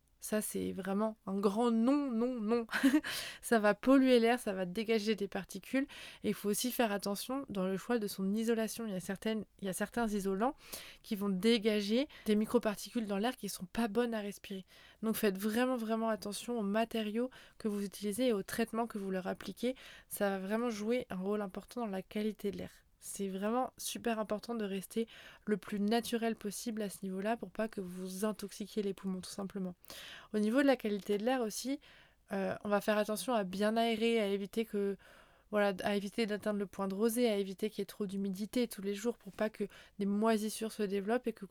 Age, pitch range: 20-39, 200-230 Hz